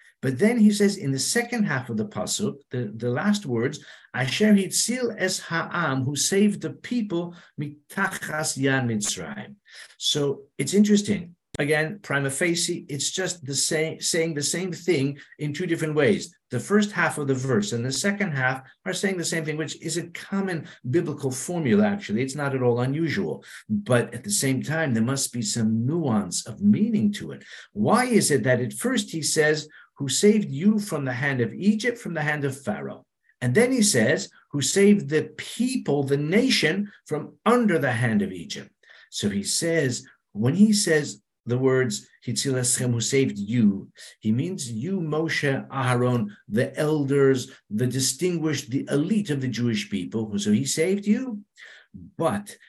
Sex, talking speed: male, 175 wpm